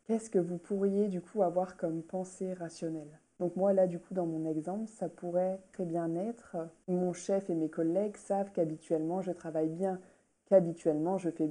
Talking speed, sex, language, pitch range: 190 wpm, female, French, 170-195 Hz